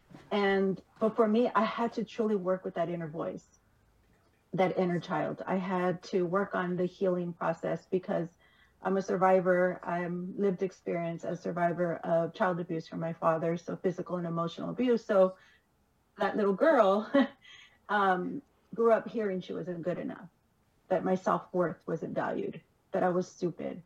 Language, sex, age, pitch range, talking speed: English, female, 40-59, 175-195 Hz, 165 wpm